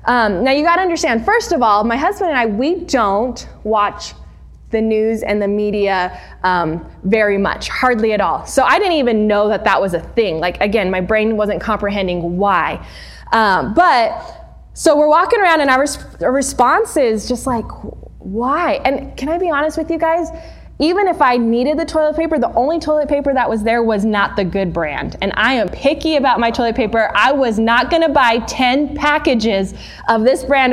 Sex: female